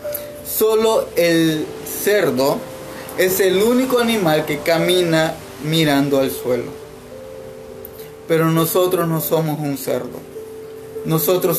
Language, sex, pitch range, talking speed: Spanish, male, 150-200 Hz, 100 wpm